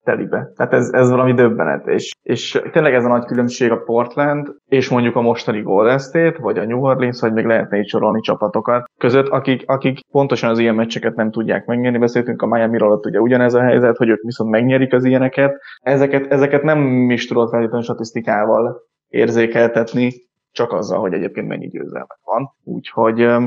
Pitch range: 120-130 Hz